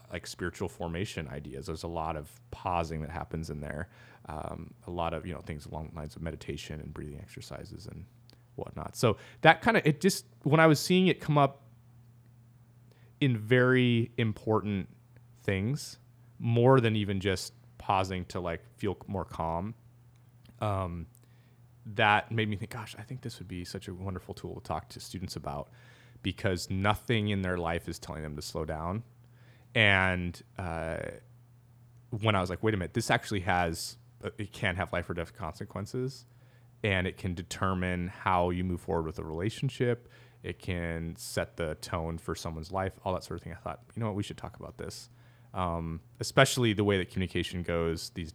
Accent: American